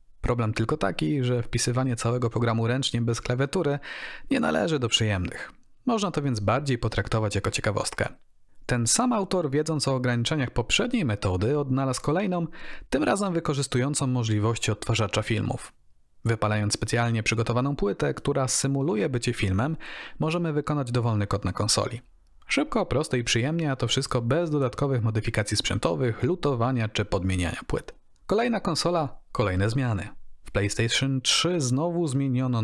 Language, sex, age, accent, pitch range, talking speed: Polish, male, 40-59, native, 110-150 Hz, 140 wpm